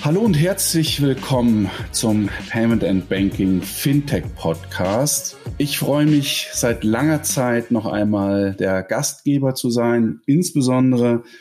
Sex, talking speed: male, 115 wpm